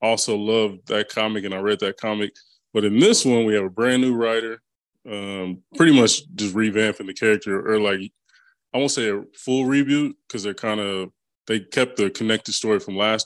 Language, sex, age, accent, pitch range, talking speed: English, male, 20-39, American, 105-120 Hz, 205 wpm